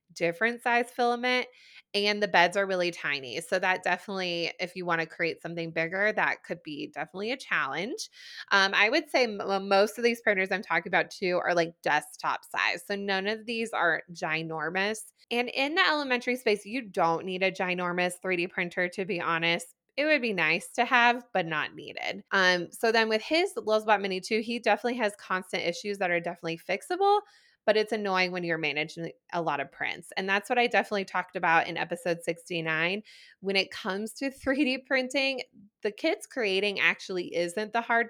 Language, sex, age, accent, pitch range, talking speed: English, female, 20-39, American, 175-235 Hz, 190 wpm